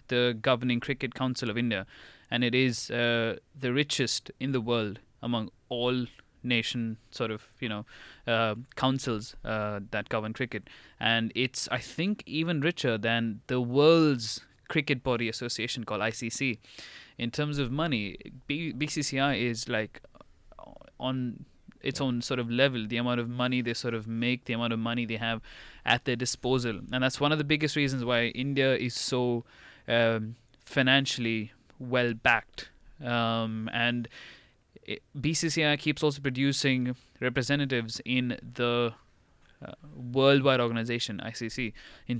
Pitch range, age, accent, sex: 115-135 Hz, 20-39, Indian, male